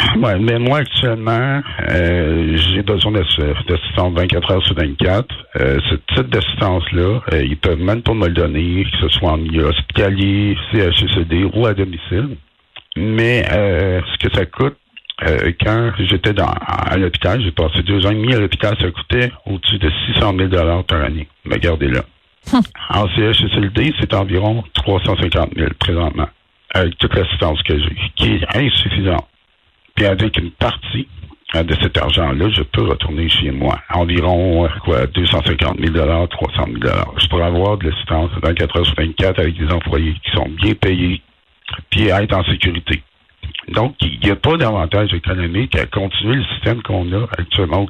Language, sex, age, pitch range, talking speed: French, male, 60-79, 85-105 Hz, 170 wpm